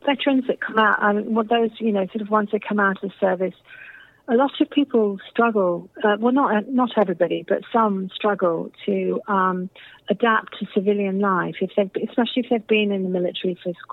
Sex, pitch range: female, 185-215 Hz